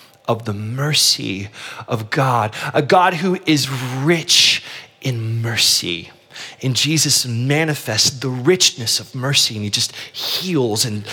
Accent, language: American, English